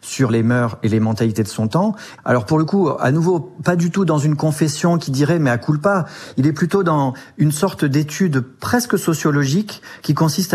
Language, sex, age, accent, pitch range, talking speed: French, male, 40-59, French, 125-155 Hz, 220 wpm